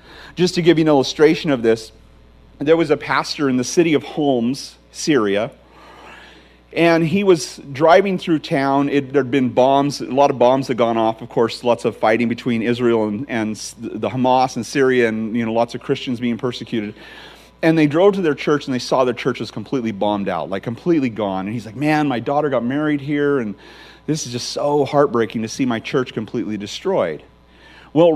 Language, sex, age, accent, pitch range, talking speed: English, male, 40-59, American, 115-160 Hz, 200 wpm